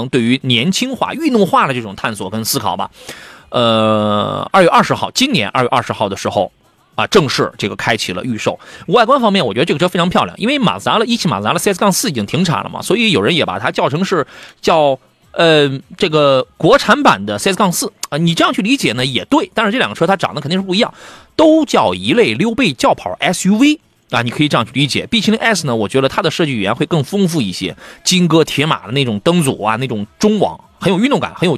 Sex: male